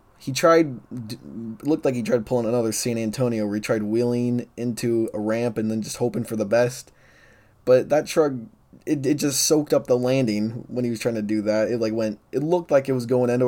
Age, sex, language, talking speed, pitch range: 20-39, male, English, 225 wpm, 110-130 Hz